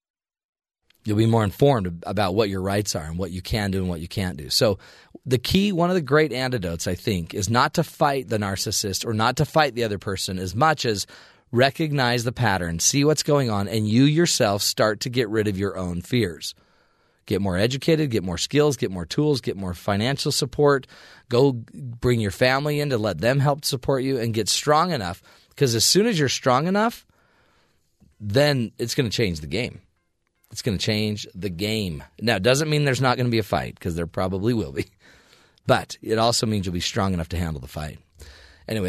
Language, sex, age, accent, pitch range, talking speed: English, male, 30-49, American, 95-140 Hz, 215 wpm